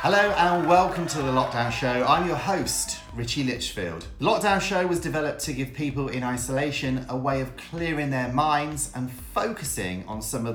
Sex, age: male, 40-59